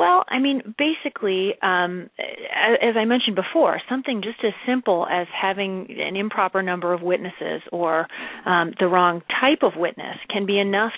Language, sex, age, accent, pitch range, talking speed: English, female, 30-49, American, 175-220 Hz, 165 wpm